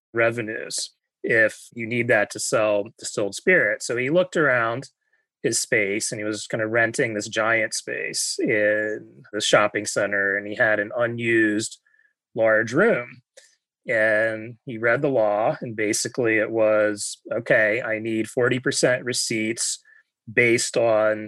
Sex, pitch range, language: male, 105-135 Hz, English